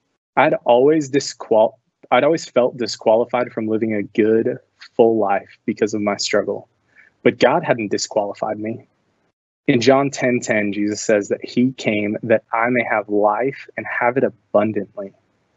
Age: 20-39